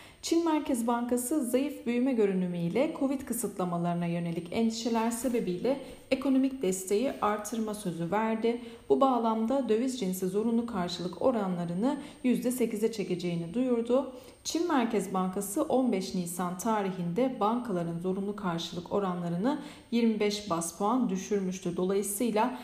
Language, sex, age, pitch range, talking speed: Turkish, female, 40-59, 185-245 Hz, 110 wpm